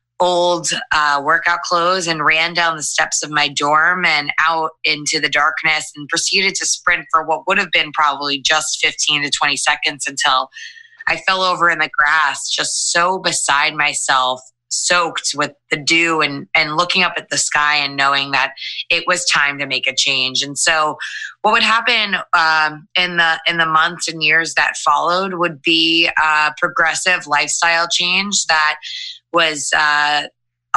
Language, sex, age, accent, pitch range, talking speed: English, female, 20-39, American, 145-175 Hz, 170 wpm